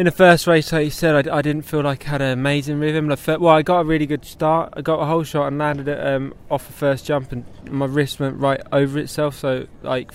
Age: 20-39